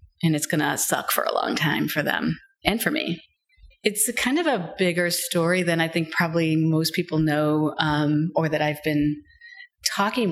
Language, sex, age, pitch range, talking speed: English, female, 30-49, 155-175 Hz, 190 wpm